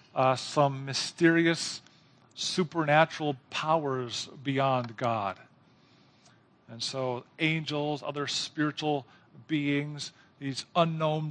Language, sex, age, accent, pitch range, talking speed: English, male, 50-69, American, 130-160 Hz, 80 wpm